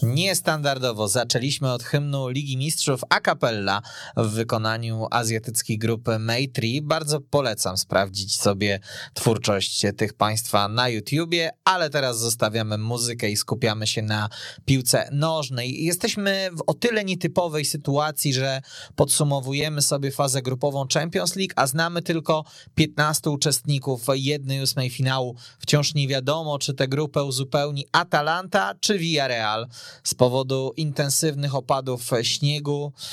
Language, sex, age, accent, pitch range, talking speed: Polish, male, 20-39, native, 125-150 Hz, 125 wpm